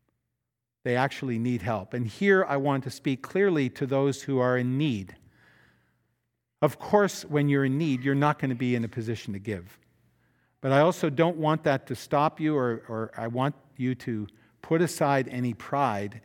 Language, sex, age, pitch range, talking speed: English, male, 50-69, 120-155 Hz, 190 wpm